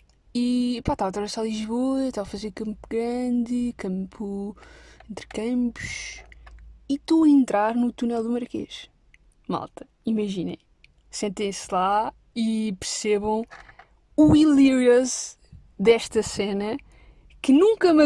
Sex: female